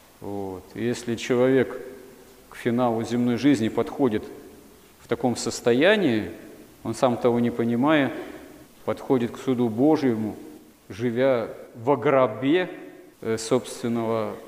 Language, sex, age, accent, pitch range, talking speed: Russian, male, 40-59, native, 110-125 Hz, 100 wpm